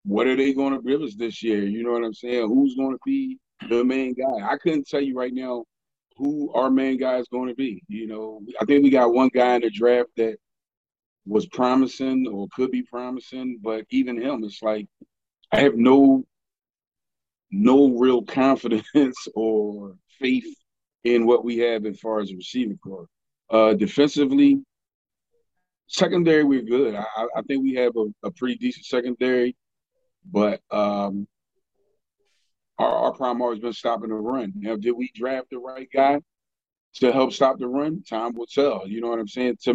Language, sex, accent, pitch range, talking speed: English, male, American, 110-135 Hz, 185 wpm